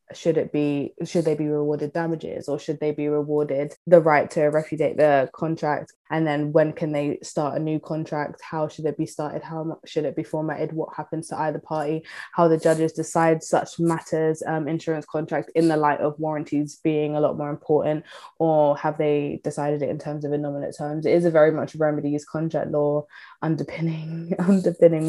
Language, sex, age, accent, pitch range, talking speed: English, female, 20-39, British, 155-175 Hz, 195 wpm